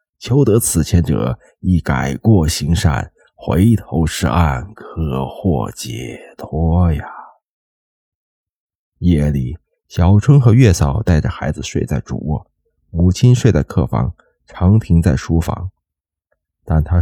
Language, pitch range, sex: Chinese, 80-105 Hz, male